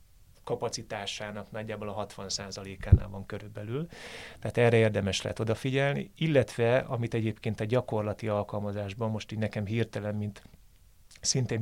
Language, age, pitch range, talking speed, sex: Hungarian, 30-49, 105-125 Hz, 125 wpm, male